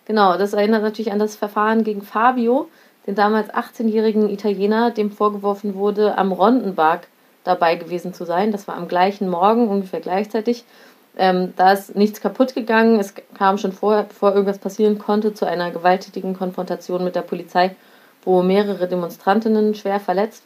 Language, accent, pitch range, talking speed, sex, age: German, German, 180-215 Hz, 160 wpm, female, 30-49